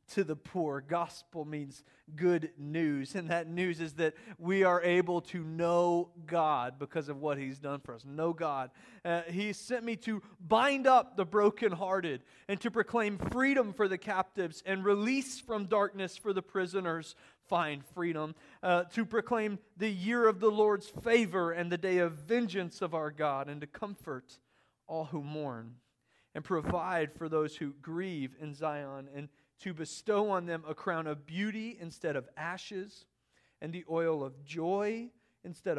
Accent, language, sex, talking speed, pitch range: American, English, male, 170 wpm, 155-195 Hz